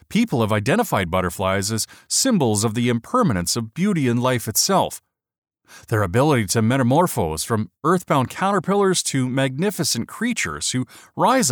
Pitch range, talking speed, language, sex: 110-165 Hz, 135 wpm, English, male